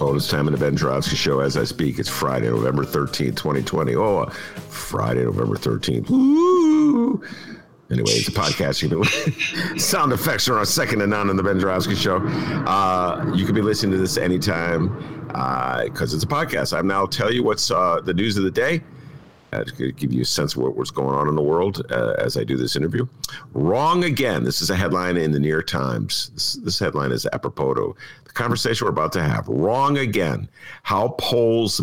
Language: English